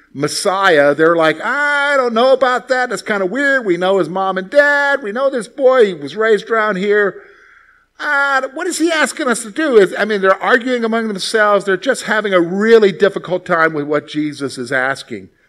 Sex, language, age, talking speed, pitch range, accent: male, English, 50-69, 210 wpm, 150-215 Hz, American